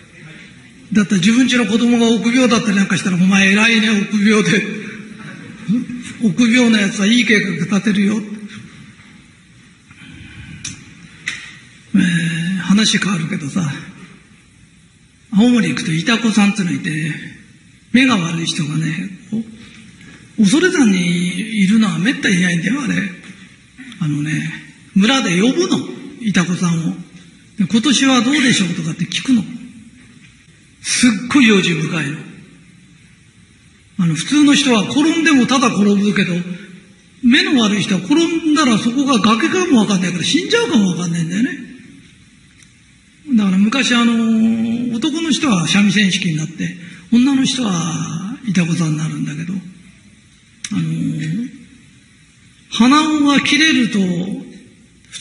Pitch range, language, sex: 180-240 Hz, Japanese, male